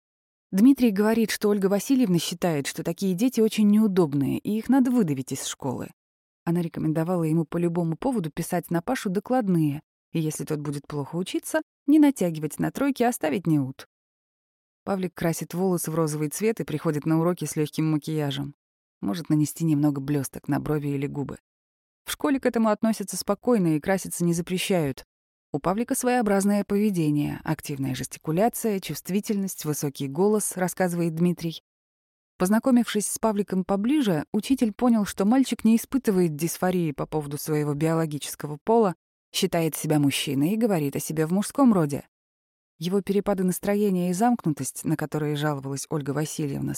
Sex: female